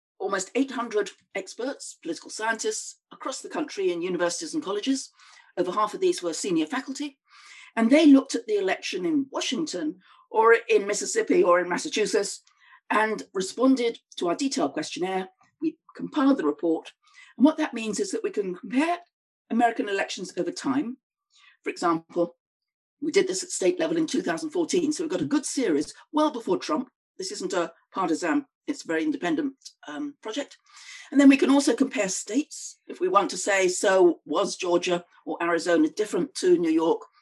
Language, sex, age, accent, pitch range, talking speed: English, female, 50-69, British, 215-335 Hz, 170 wpm